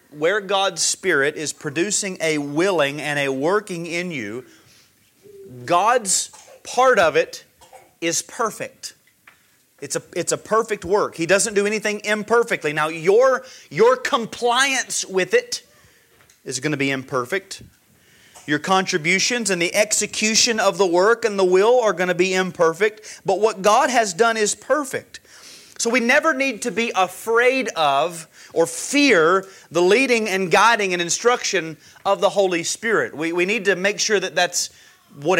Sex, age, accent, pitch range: male, 30-49, American, 180-245 Hz